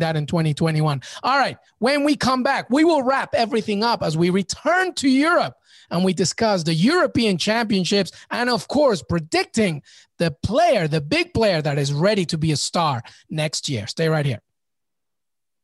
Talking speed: 175 wpm